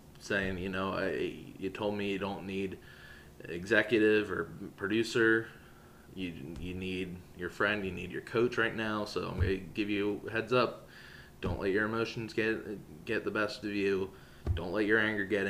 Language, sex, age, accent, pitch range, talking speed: English, male, 20-39, American, 95-110 Hz, 180 wpm